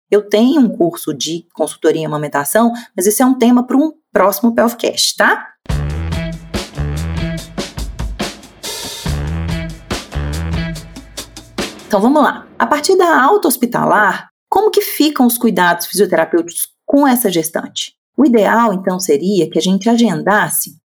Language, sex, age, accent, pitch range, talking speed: Portuguese, female, 30-49, Brazilian, 170-245 Hz, 120 wpm